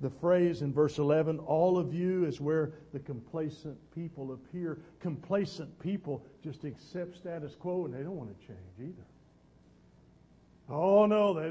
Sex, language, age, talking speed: male, English, 50-69, 155 wpm